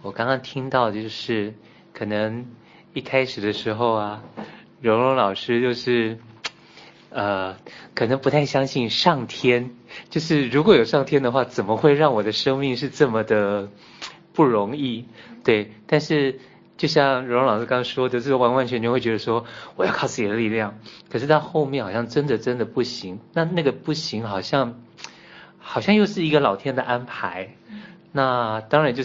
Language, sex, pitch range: Chinese, male, 110-140 Hz